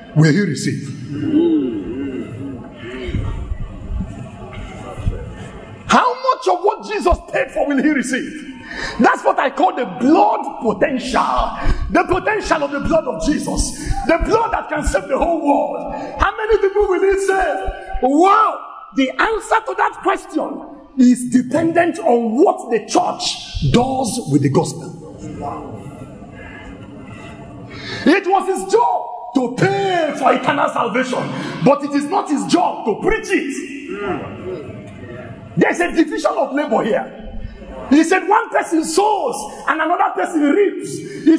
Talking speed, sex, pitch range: 135 wpm, male, 255-375 Hz